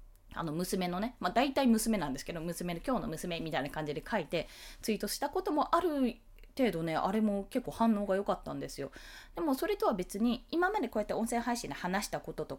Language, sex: Japanese, female